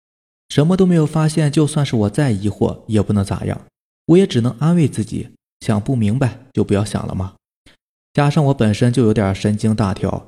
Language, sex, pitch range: Chinese, male, 105-165 Hz